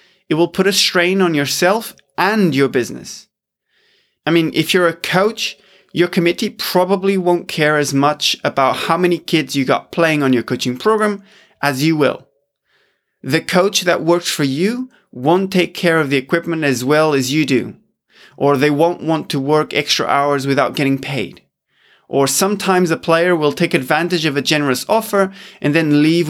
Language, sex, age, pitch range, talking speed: English, male, 20-39, 145-185 Hz, 180 wpm